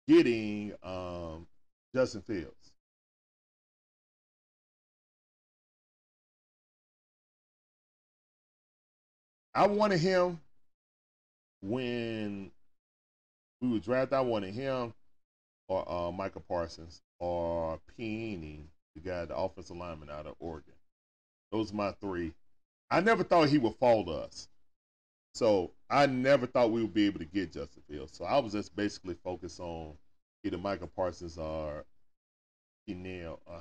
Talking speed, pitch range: 115 wpm, 80-135 Hz